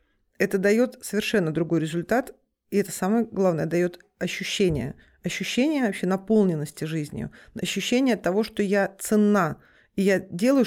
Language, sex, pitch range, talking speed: Russian, female, 175-235 Hz, 130 wpm